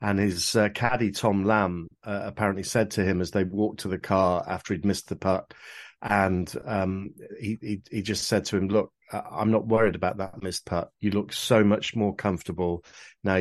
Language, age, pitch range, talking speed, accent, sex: English, 40-59, 95-110 Hz, 205 wpm, British, male